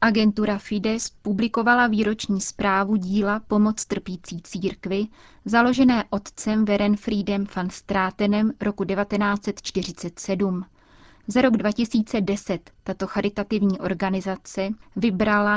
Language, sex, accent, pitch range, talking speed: Czech, female, native, 190-215 Hz, 90 wpm